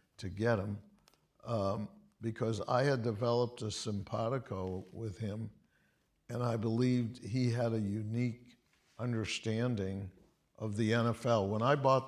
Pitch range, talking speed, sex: 105-125 Hz, 130 wpm, male